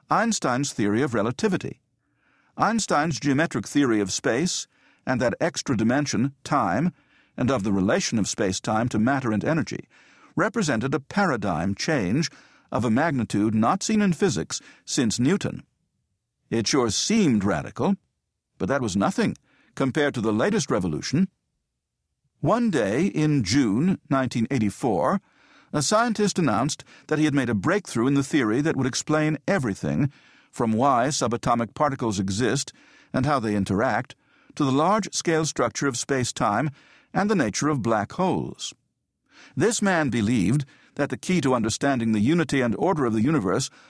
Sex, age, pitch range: male, 50-69, 120-160 Hz